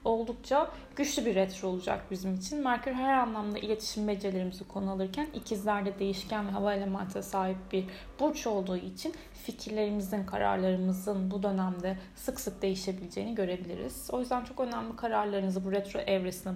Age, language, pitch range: 10-29, Turkish, 190-255 Hz